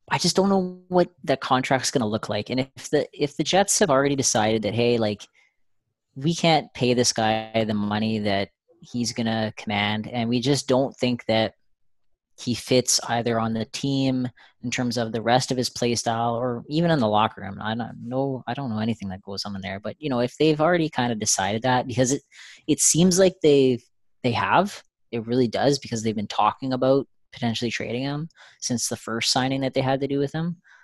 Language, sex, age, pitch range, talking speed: English, female, 20-39, 110-130 Hz, 220 wpm